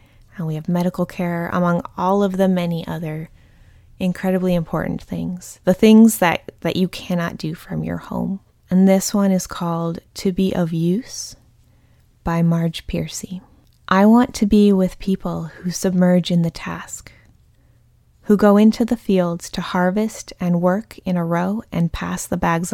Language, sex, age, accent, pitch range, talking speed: English, female, 20-39, American, 170-195 Hz, 165 wpm